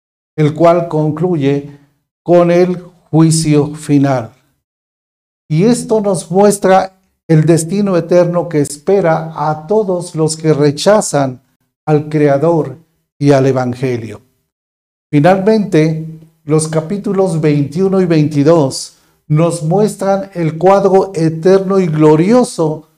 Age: 50-69